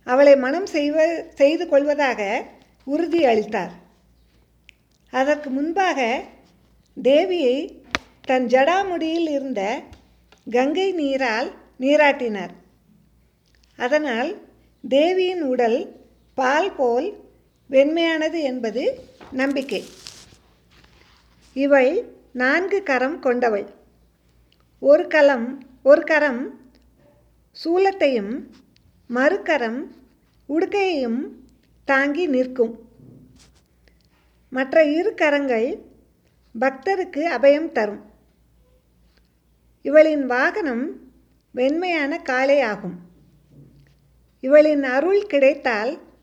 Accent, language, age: native, Tamil, 50-69